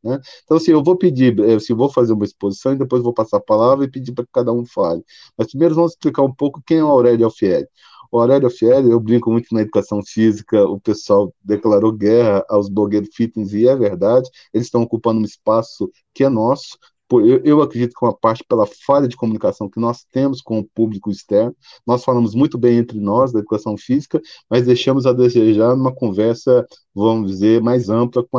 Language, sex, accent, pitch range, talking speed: Portuguese, male, Brazilian, 110-130 Hz, 210 wpm